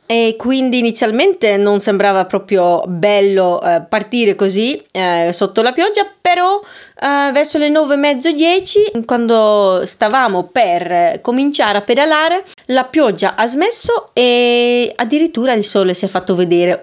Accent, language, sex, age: native, Italian, female, 30-49